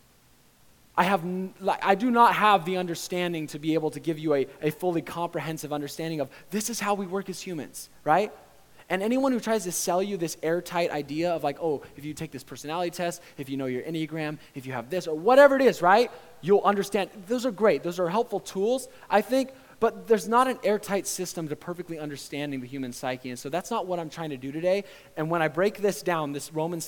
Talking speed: 230 wpm